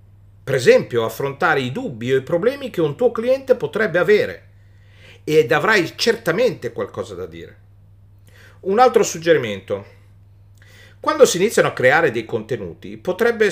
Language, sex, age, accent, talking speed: Italian, male, 50-69, native, 140 wpm